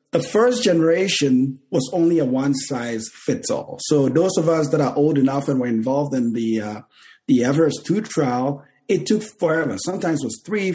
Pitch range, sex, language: 135-175 Hz, male, English